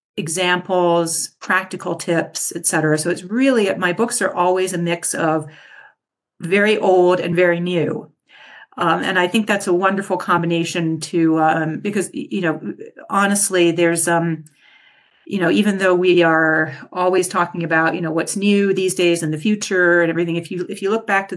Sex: female